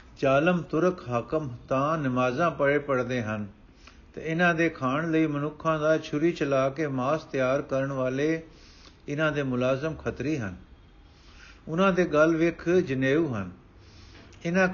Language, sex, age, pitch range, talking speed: Punjabi, male, 50-69, 125-170 Hz, 140 wpm